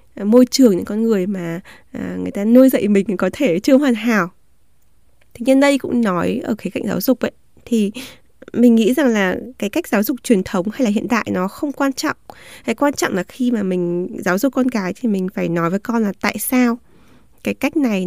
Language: Vietnamese